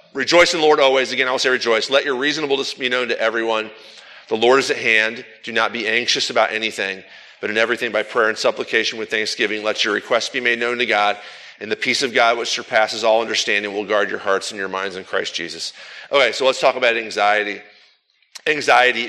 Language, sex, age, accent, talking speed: English, male, 40-59, American, 225 wpm